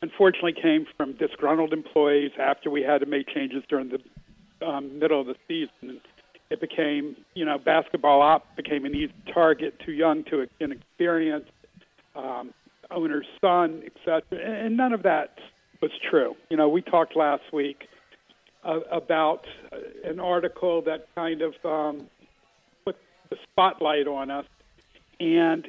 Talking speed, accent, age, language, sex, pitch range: 145 wpm, American, 50-69, English, male, 150-195 Hz